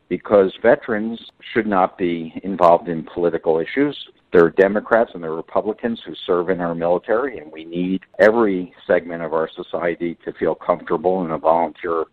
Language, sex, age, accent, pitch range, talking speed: English, male, 50-69, American, 80-95 Hz, 175 wpm